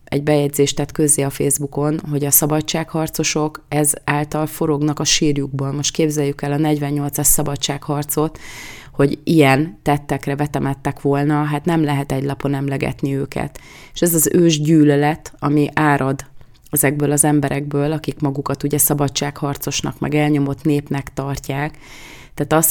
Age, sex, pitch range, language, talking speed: 30-49, female, 140-150 Hz, Hungarian, 140 wpm